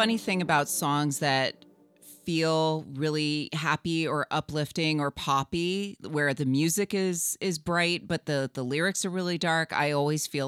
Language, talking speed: English, 160 wpm